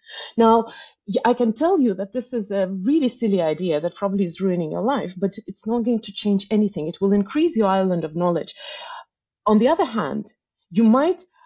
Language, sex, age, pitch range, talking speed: English, female, 30-49, 180-230 Hz, 200 wpm